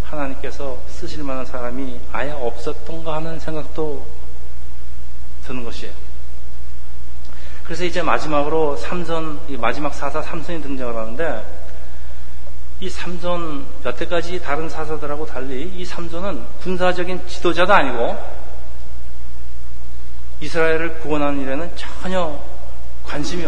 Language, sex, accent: Korean, male, native